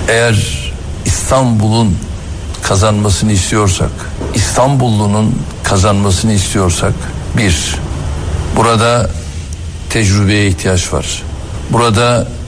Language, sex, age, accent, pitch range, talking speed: Turkish, male, 60-79, native, 95-125 Hz, 65 wpm